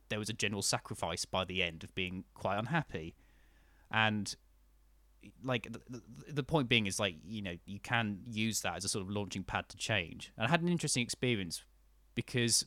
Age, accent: 20-39, British